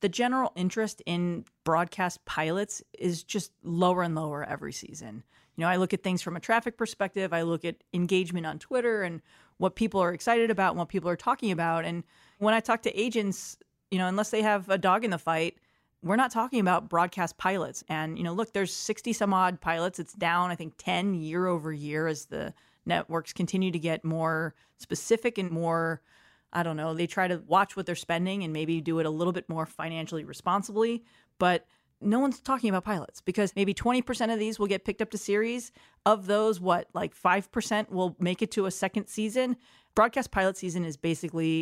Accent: American